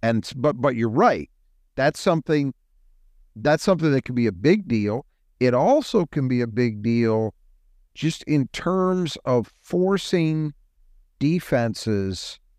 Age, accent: 50-69, American